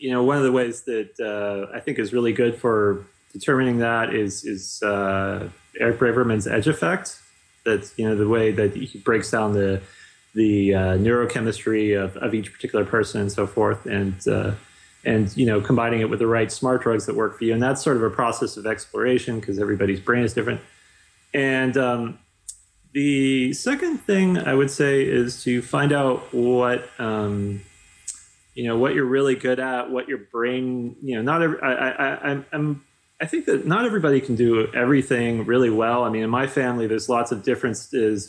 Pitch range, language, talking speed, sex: 105-125 Hz, English, 195 wpm, male